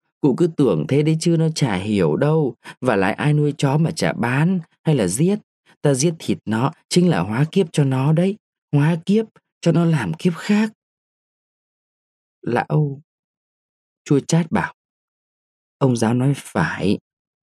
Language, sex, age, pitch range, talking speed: Vietnamese, male, 20-39, 135-165 Hz, 160 wpm